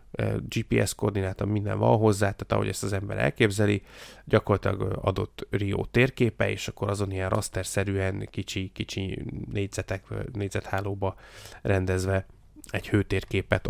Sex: male